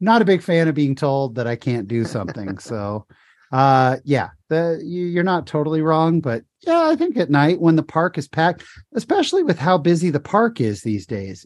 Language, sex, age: English, male, 30-49